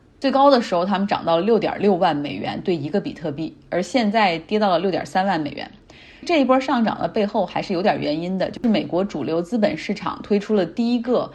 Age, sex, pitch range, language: 20-39, female, 165-225 Hz, Chinese